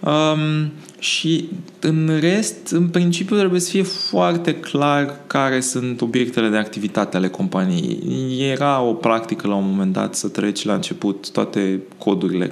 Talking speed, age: 150 wpm, 20-39